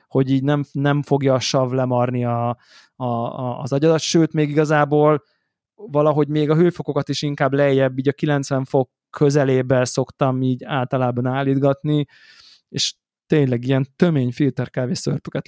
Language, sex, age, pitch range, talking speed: Hungarian, male, 20-39, 130-155 Hz, 145 wpm